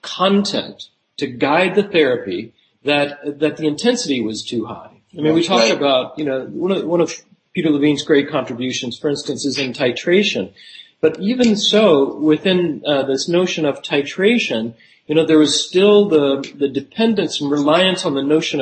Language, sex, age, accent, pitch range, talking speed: English, male, 40-59, American, 130-170 Hz, 175 wpm